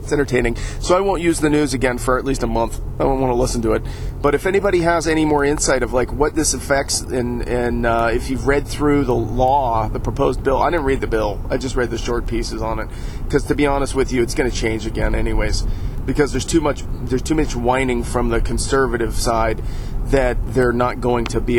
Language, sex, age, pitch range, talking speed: English, male, 40-59, 110-130 Hz, 245 wpm